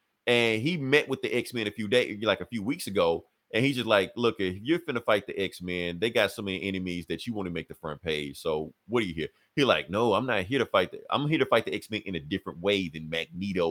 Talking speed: 295 wpm